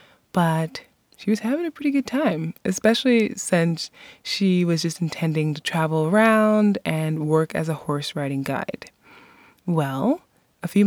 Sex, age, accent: female, 20-39, American